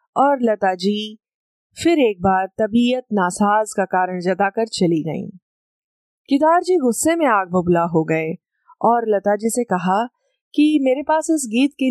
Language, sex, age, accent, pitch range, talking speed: Hindi, female, 20-39, native, 190-275 Hz, 160 wpm